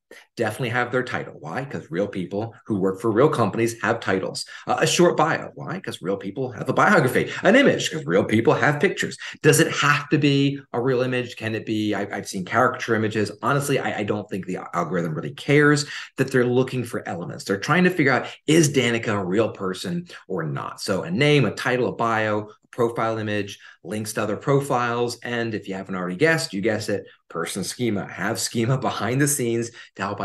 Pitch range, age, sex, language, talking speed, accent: 100-140 Hz, 30-49, male, English, 210 wpm, American